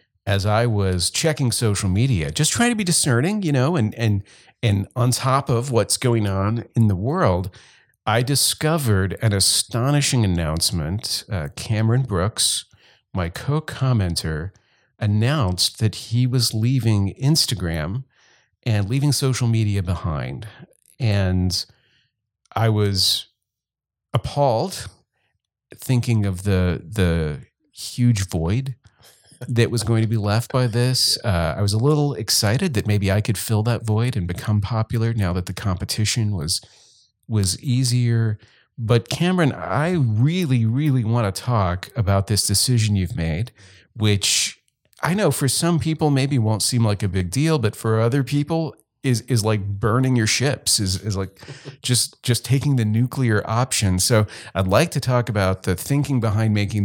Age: 50-69